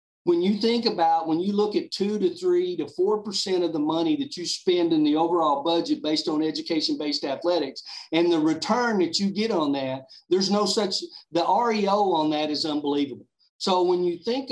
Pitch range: 165-220 Hz